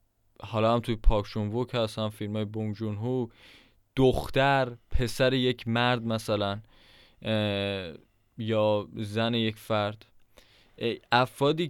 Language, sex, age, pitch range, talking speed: Persian, male, 20-39, 110-140 Hz, 105 wpm